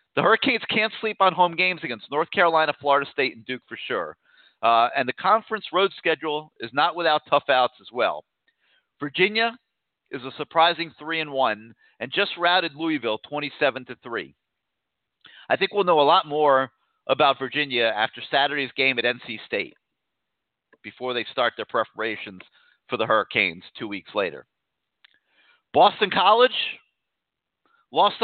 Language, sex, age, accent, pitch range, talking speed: English, male, 40-59, American, 130-195 Hz, 150 wpm